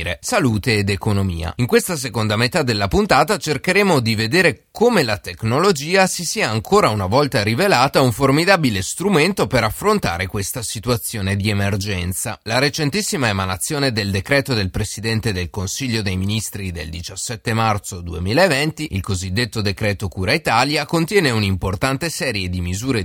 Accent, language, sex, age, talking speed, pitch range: native, Italian, male, 30-49, 145 wpm, 100-140 Hz